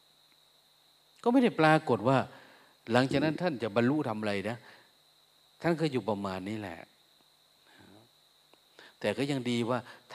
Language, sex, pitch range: Thai, male, 100-135 Hz